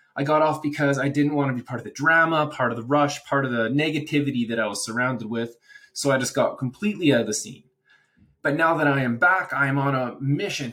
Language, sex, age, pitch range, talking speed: English, male, 20-39, 125-150 Hz, 255 wpm